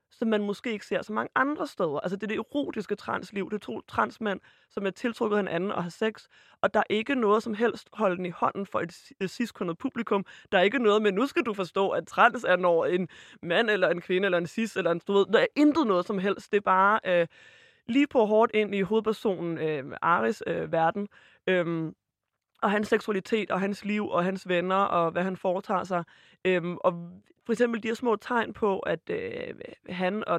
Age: 20-39